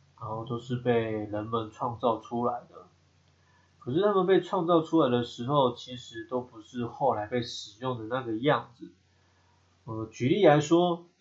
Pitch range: 110-145 Hz